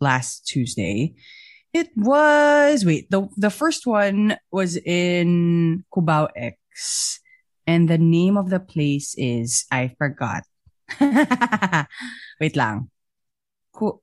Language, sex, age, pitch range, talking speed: English, female, 20-39, 155-200 Hz, 105 wpm